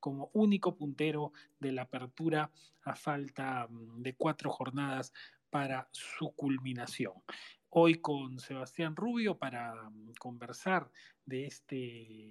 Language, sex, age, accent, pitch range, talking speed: Spanish, male, 30-49, Argentinian, 125-160 Hz, 105 wpm